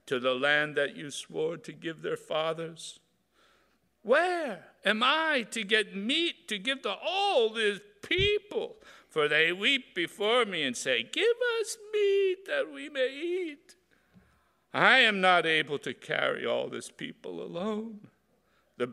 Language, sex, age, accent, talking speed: English, male, 60-79, American, 150 wpm